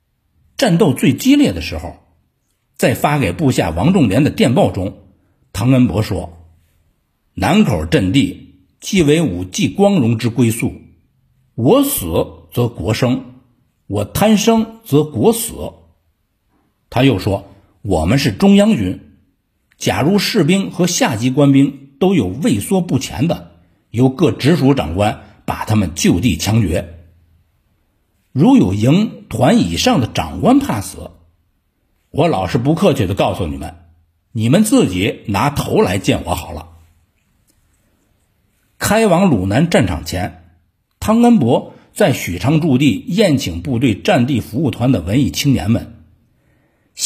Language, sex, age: Chinese, male, 60-79